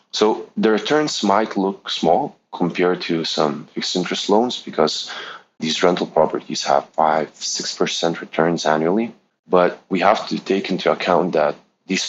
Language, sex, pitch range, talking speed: English, male, 80-95 Hz, 155 wpm